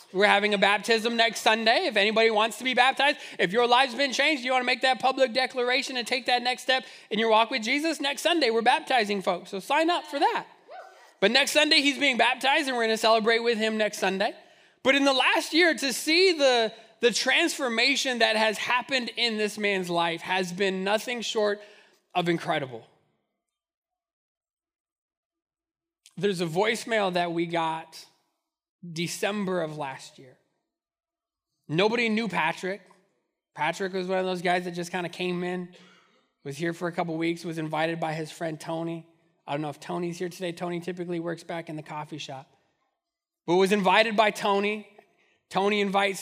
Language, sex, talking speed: English, male, 185 wpm